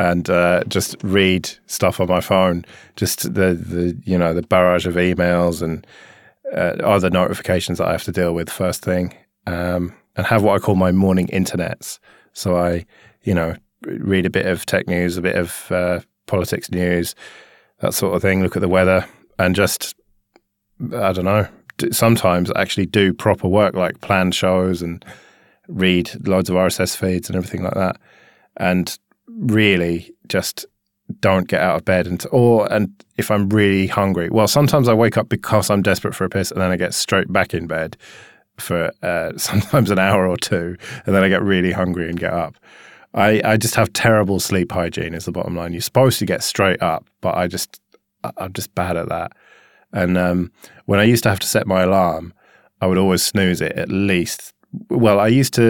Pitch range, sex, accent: 90-105 Hz, male, British